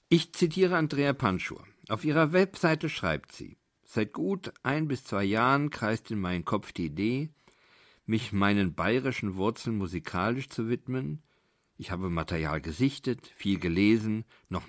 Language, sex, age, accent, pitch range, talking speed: German, male, 50-69, German, 100-130 Hz, 145 wpm